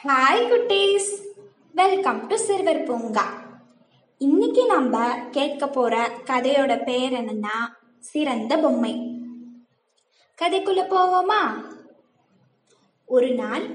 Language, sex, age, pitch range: Tamil, female, 20-39, 245-330 Hz